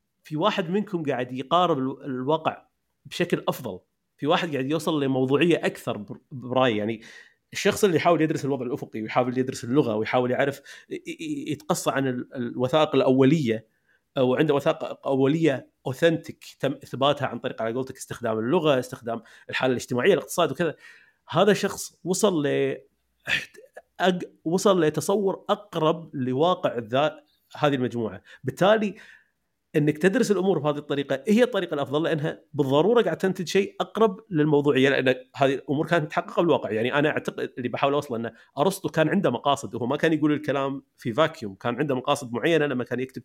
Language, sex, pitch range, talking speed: Arabic, male, 130-170 Hz, 145 wpm